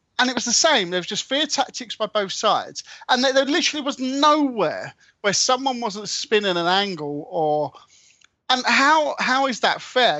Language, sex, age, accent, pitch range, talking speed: English, male, 30-49, British, 180-230 Hz, 190 wpm